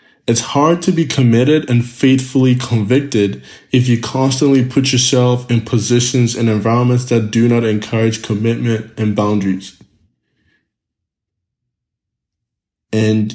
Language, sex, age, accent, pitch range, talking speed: English, male, 20-39, American, 105-125 Hz, 110 wpm